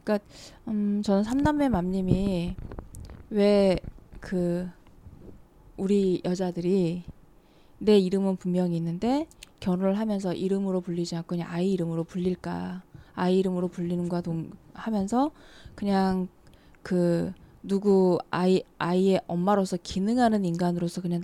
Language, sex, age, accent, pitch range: Korean, female, 20-39, native, 175-200 Hz